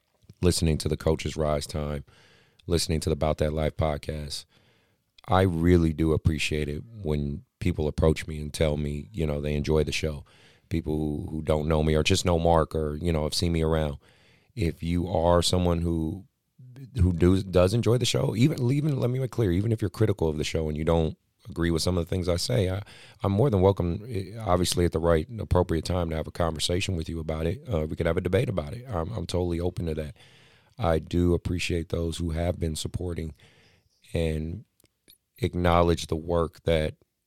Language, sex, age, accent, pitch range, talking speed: English, male, 30-49, American, 80-95 Hz, 210 wpm